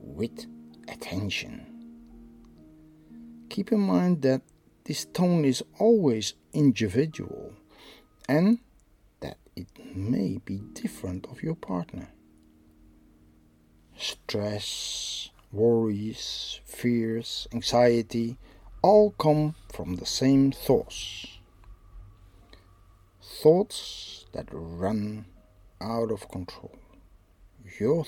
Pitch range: 90-135 Hz